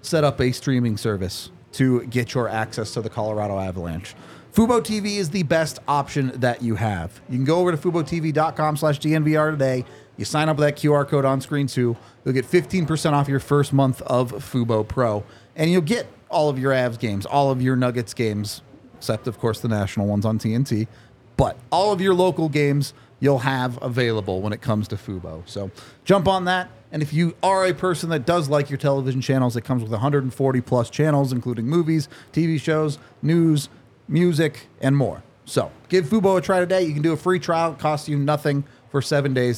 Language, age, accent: English, 30-49, American